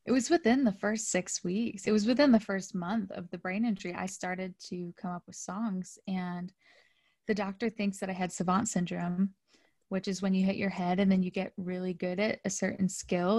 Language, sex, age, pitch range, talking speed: English, female, 20-39, 180-205 Hz, 225 wpm